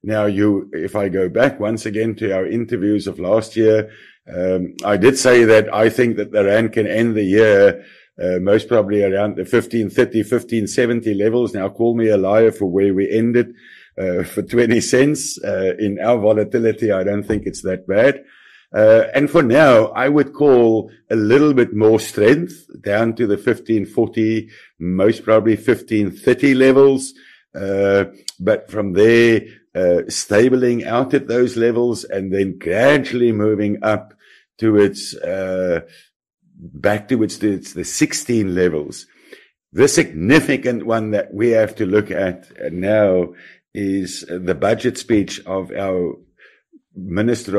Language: English